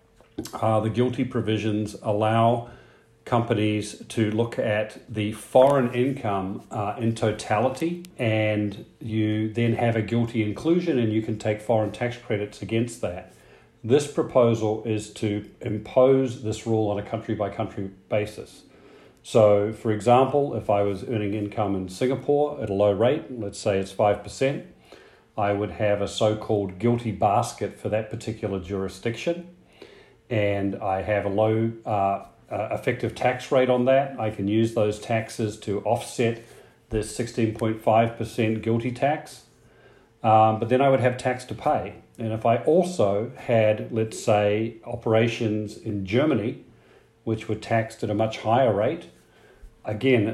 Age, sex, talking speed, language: 40-59, male, 150 wpm, English